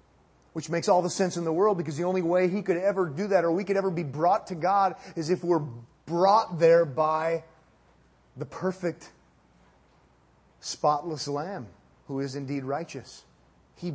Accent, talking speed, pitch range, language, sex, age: American, 170 wpm, 115-145 Hz, English, male, 30-49